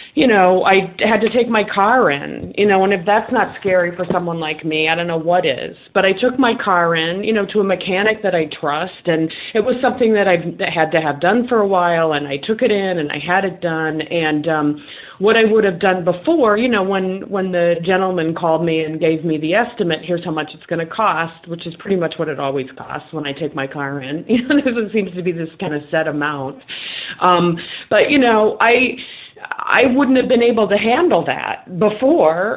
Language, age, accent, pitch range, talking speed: English, 30-49, American, 165-225 Hz, 240 wpm